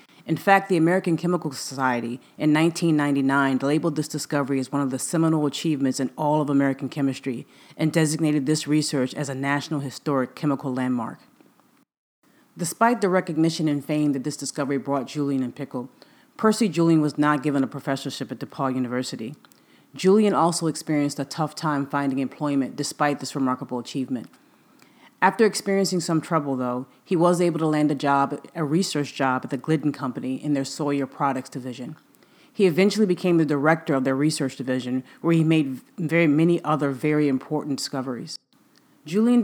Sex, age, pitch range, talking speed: female, 30-49, 135-160 Hz, 165 wpm